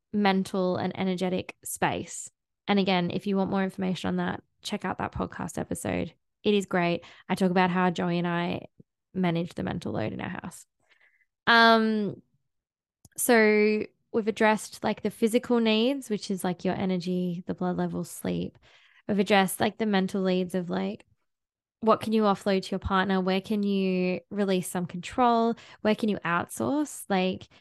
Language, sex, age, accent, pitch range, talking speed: English, female, 10-29, Australian, 185-205 Hz, 170 wpm